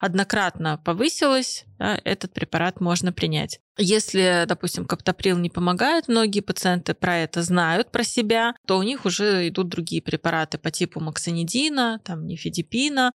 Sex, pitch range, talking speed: female, 175-205 Hz, 140 wpm